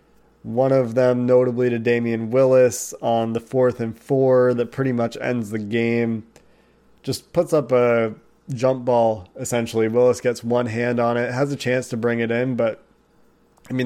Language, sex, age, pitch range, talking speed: English, male, 30-49, 115-135 Hz, 180 wpm